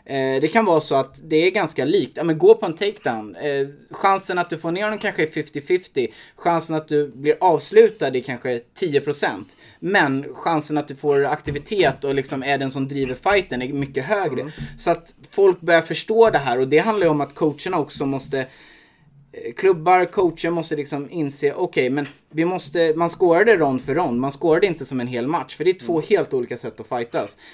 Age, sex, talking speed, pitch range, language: 20-39, male, 210 wpm, 135-180 Hz, Swedish